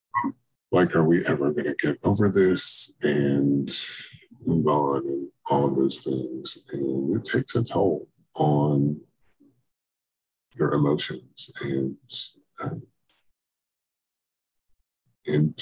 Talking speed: 105 wpm